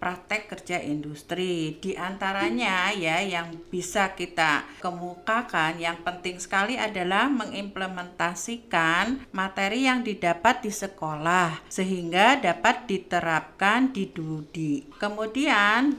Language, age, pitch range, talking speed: Indonesian, 50-69, 175-230 Hz, 100 wpm